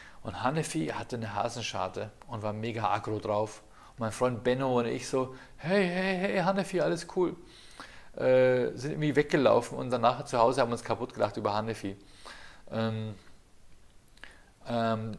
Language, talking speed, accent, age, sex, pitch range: German, 160 wpm, German, 40-59, male, 115-155 Hz